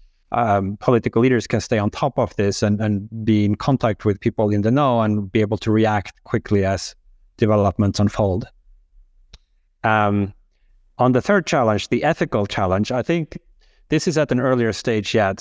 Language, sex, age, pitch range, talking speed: Finnish, male, 30-49, 105-120 Hz, 175 wpm